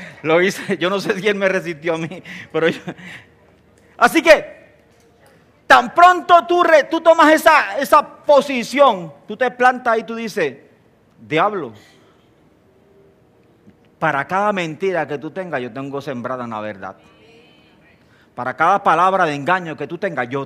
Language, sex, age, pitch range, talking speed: English, male, 40-59, 150-240 Hz, 145 wpm